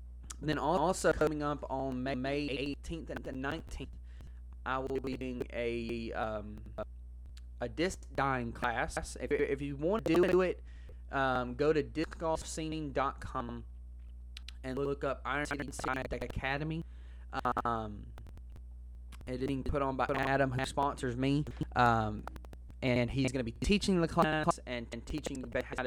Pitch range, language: 105-140 Hz, English